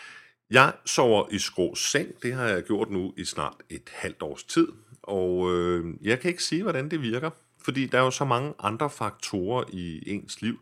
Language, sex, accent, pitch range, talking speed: Danish, male, native, 90-130 Hz, 205 wpm